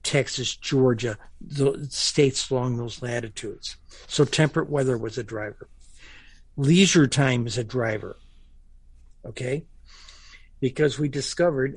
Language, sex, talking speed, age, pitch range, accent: English, male, 110 wpm, 60-79, 115-140 Hz, American